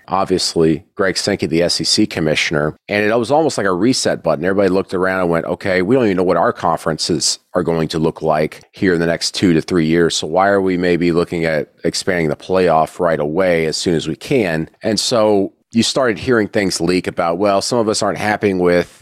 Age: 40-59